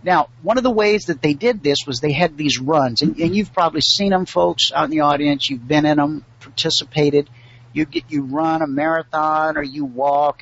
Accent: American